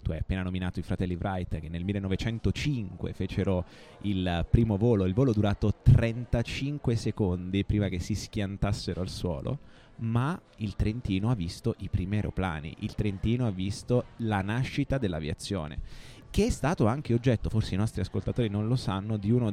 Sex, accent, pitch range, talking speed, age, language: male, native, 95-115 Hz, 165 wpm, 20-39, Italian